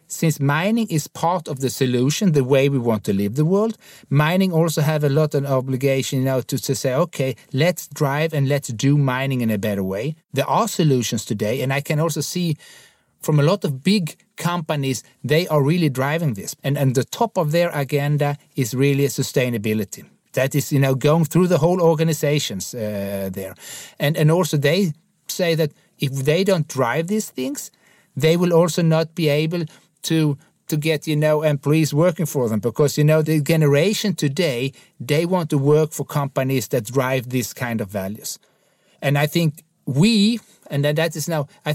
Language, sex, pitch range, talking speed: English, male, 135-165 Hz, 190 wpm